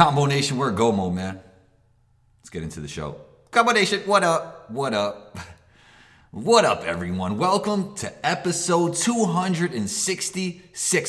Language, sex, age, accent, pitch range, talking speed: English, male, 30-49, American, 95-150 Hz, 130 wpm